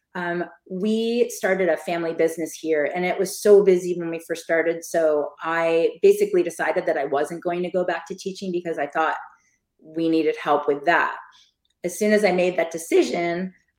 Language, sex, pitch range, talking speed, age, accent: English, female, 165-200 Hz, 190 wpm, 30-49, American